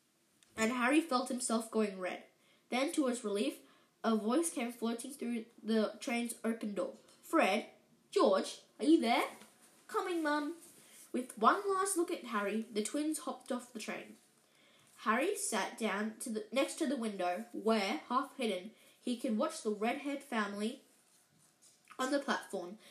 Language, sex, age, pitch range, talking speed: English, female, 10-29, 220-295 Hz, 150 wpm